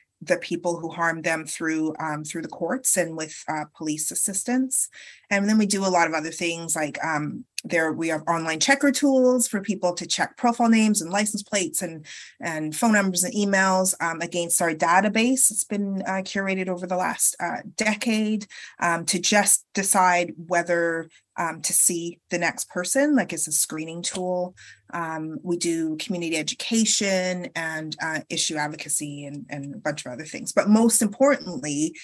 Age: 30-49